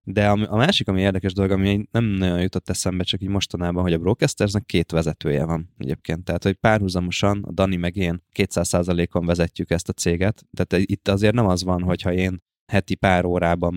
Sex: male